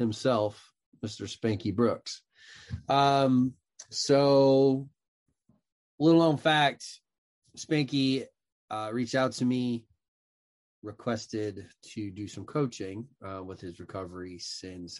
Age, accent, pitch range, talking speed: 20-39, American, 100-140 Hz, 100 wpm